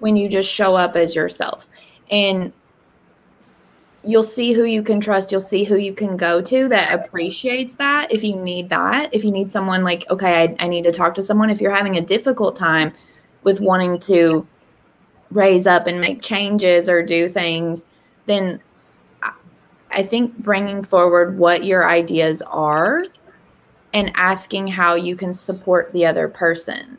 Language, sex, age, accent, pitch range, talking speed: English, female, 20-39, American, 175-210 Hz, 170 wpm